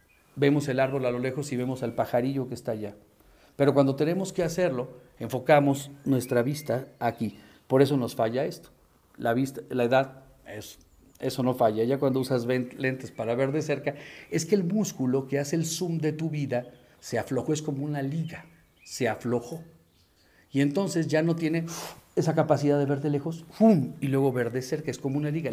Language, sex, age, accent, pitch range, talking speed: English, male, 40-59, Mexican, 120-155 Hz, 195 wpm